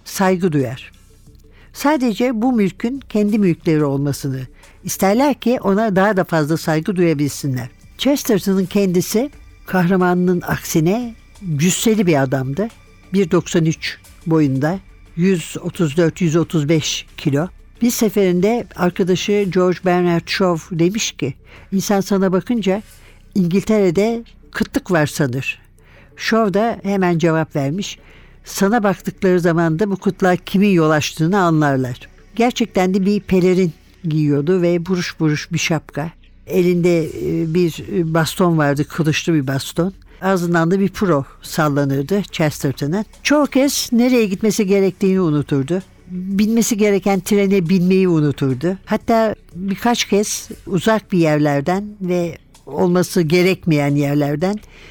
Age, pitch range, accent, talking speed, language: 60-79, 155-200 Hz, native, 110 wpm, Turkish